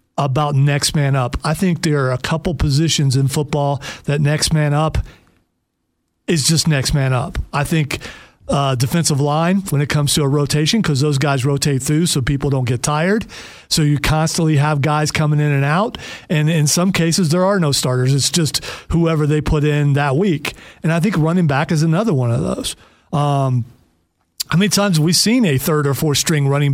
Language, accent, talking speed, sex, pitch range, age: English, American, 205 wpm, male, 140-170 Hz, 40-59